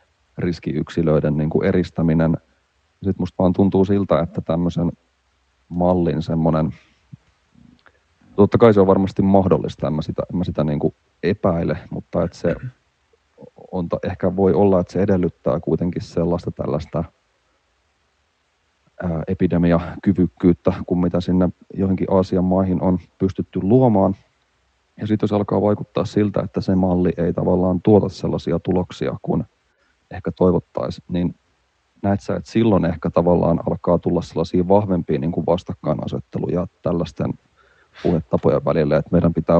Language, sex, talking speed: Finnish, male, 130 wpm